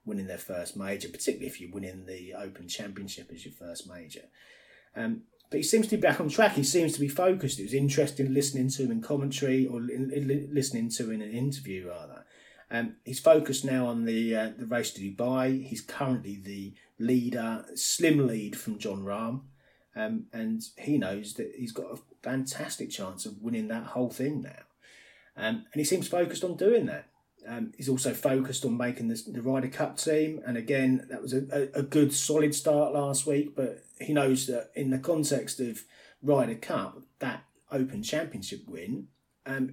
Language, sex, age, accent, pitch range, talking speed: English, male, 30-49, British, 120-150 Hz, 190 wpm